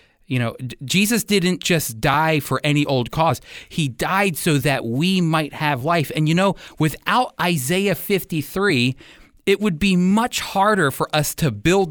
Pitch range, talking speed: 130-180 Hz, 165 wpm